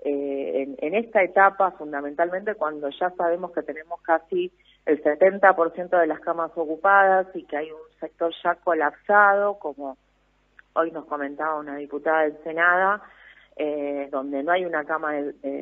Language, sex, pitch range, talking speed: Spanish, female, 155-200 Hz, 155 wpm